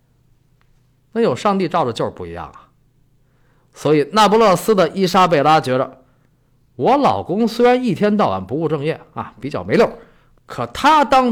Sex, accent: male, native